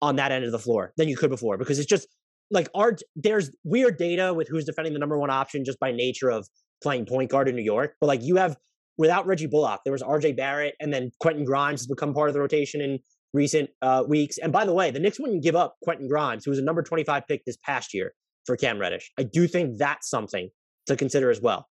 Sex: male